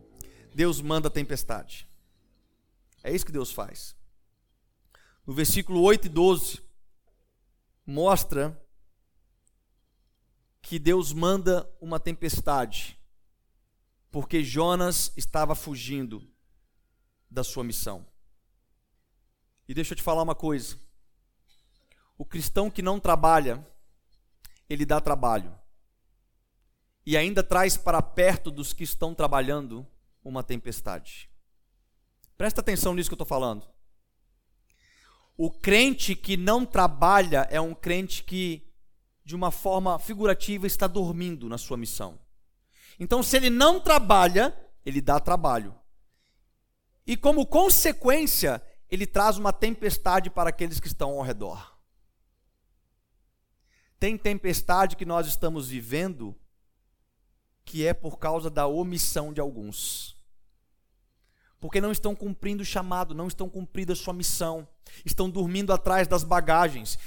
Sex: male